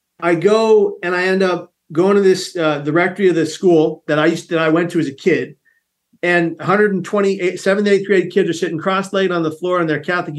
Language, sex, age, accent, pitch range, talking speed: English, male, 40-59, American, 155-190 Hz, 230 wpm